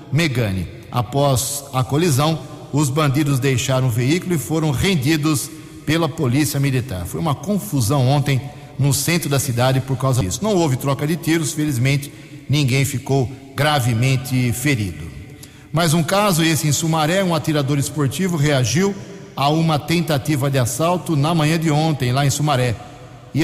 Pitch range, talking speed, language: 135-160 Hz, 150 wpm, Portuguese